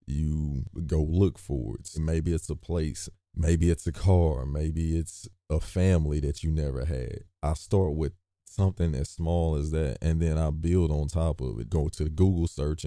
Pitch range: 70-85 Hz